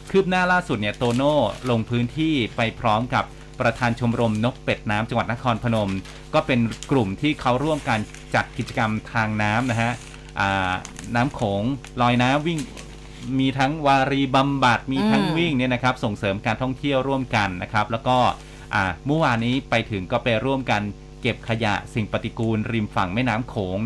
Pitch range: 105-130 Hz